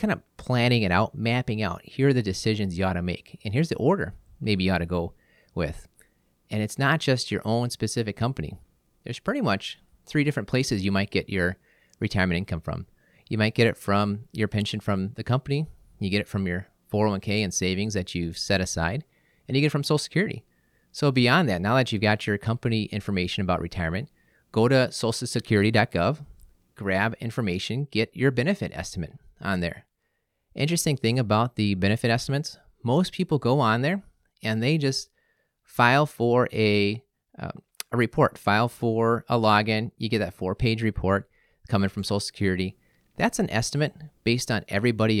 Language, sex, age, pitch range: English, male, 30-49, 100-125 Hz